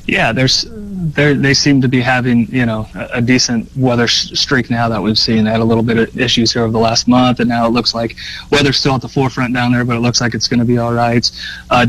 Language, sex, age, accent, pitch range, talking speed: English, male, 30-49, American, 110-125 Hz, 260 wpm